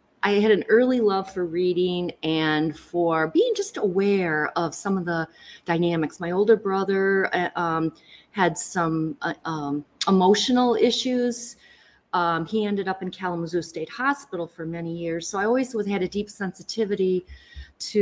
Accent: American